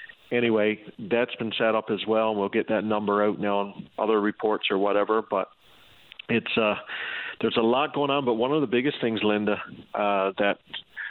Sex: male